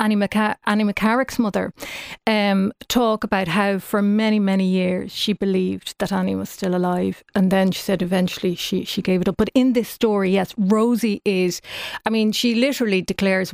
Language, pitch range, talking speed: English, 195-230 Hz, 175 wpm